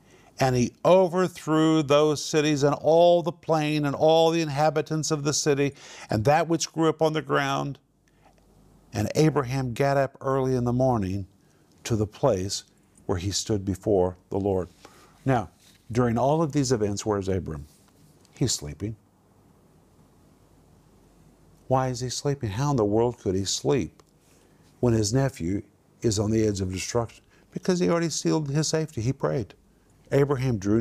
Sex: male